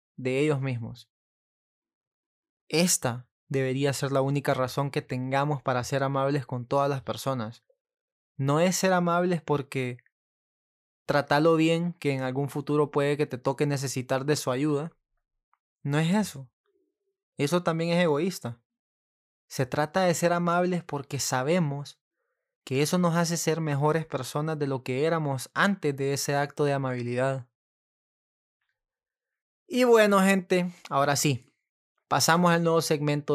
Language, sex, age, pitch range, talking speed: Spanish, male, 20-39, 130-165 Hz, 140 wpm